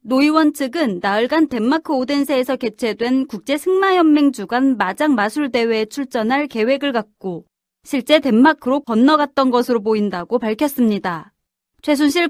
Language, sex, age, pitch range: Korean, female, 30-49, 235-305 Hz